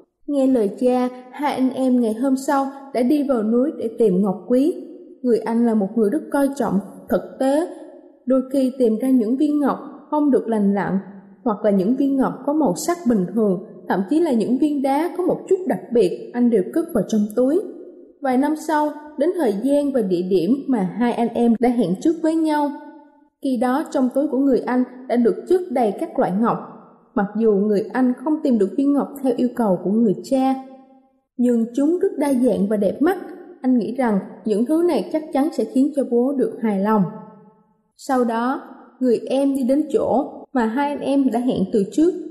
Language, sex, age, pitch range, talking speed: Vietnamese, female, 20-39, 230-290 Hz, 215 wpm